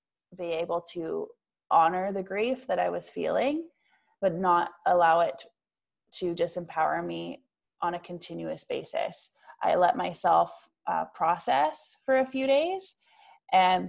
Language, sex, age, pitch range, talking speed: English, female, 20-39, 170-195 Hz, 135 wpm